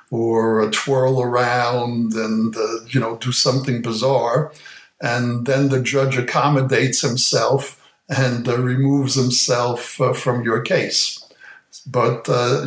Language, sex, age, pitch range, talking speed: English, male, 60-79, 120-135 Hz, 130 wpm